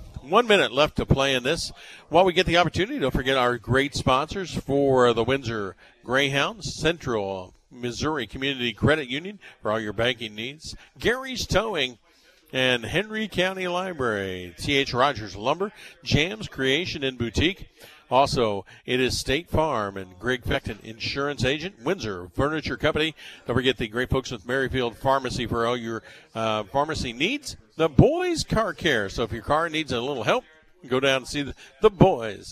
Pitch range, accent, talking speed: 125-175 Hz, American, 165 wpm